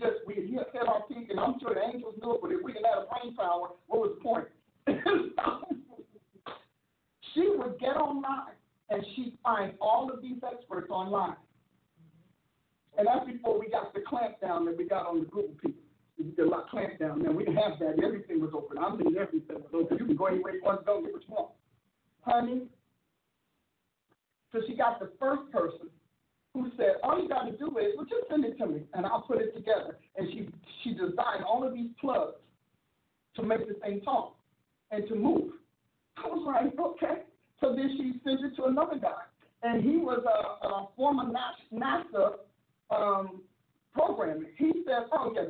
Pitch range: 205-305 Hz